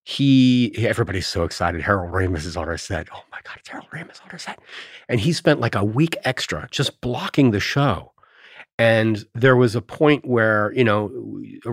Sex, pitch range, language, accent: male, 95-135 Hz, English, American